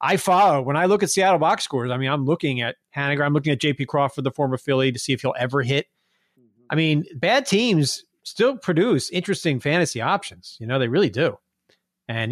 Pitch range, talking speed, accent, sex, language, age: 125-155 Hz, 225 wpm, American, male, English, 30-49